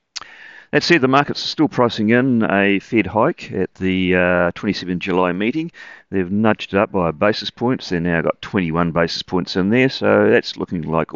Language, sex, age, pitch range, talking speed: English, male, 40-59, 85-110 Hz, 195 wpm